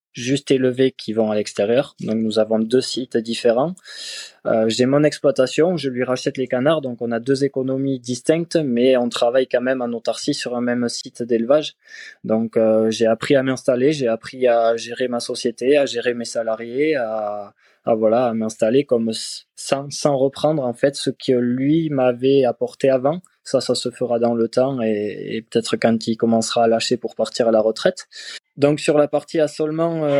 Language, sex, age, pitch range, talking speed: French, male, 20-39, 120-140 Hz, 195 wpm